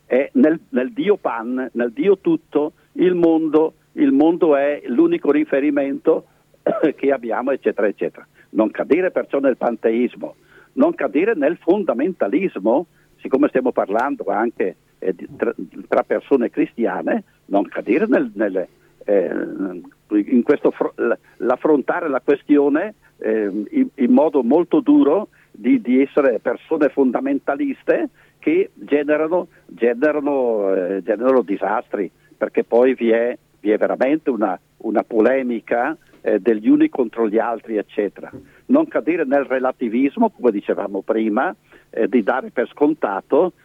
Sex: male